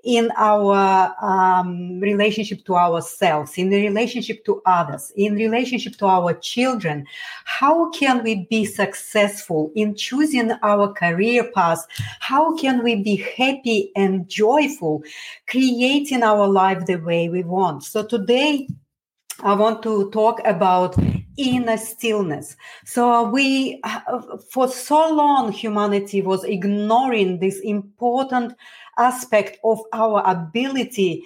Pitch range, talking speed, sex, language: 190-240 Hz, 120 wpm, female, English